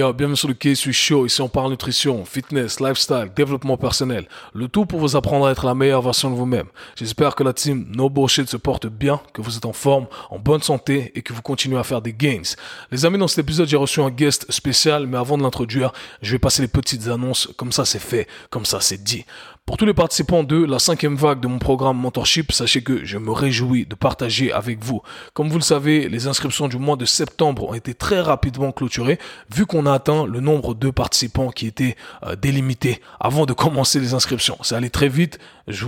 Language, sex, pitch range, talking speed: French, male, 125-150 Hz, 225 wpm